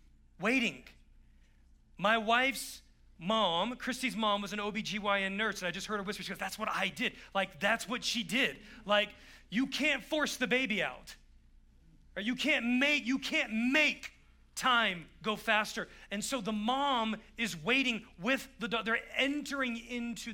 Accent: American